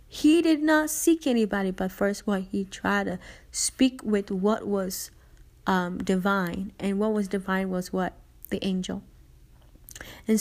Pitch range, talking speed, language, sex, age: 200-245 Hz, 155 wpm, English, female, 30-49